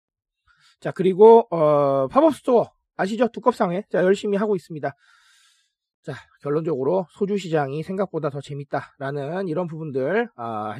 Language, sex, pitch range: Korean, male, 150-240 Hz